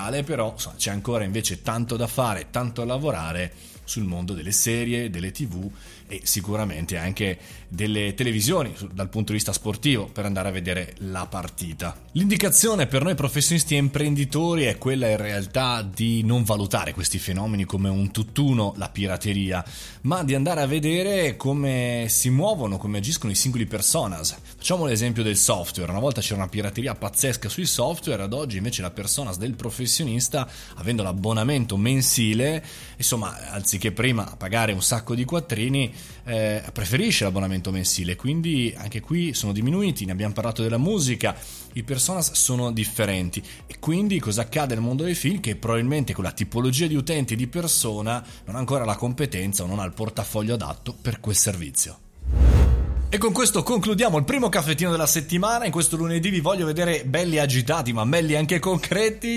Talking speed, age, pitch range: 170 wpm, 20-39, 100-150 Hz